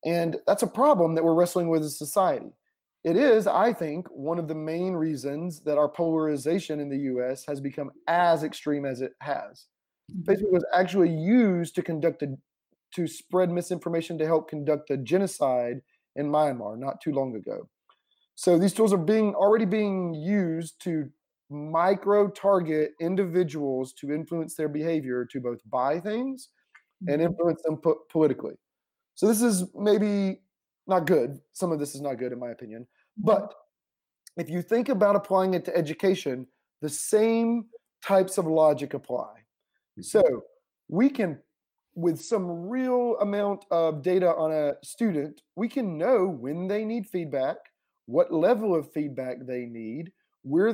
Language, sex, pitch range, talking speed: English, male, 150-195 Hz, 155 wpm